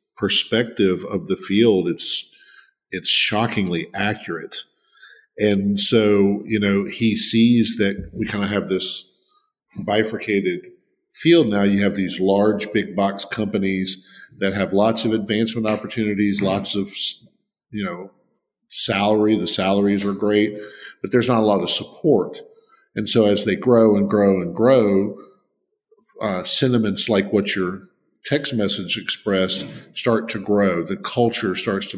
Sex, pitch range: male, 100-115 Hz